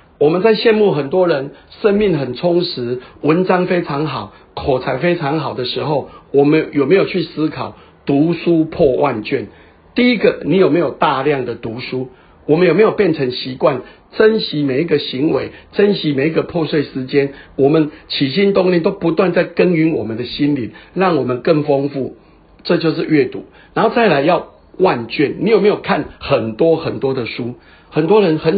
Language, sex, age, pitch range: Chinese, male, 50-69, 135-175 Hz